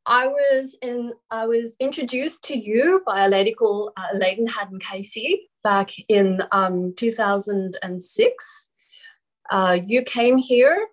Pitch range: 195-265 Hz